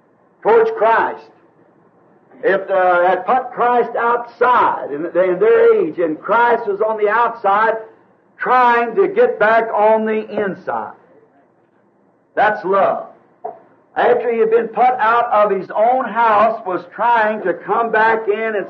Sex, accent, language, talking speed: male, American, English, 140 wpm